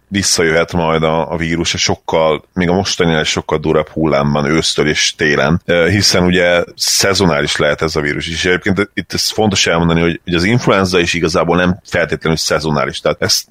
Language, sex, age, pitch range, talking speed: Hungarian, male, 30-49, 80-95 Hz, 180 wpm